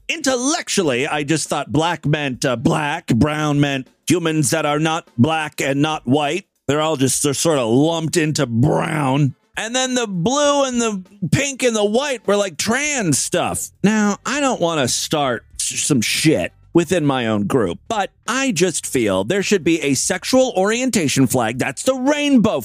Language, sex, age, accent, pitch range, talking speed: English, male, 40-59, American, 160-250 Hz, 180 wpm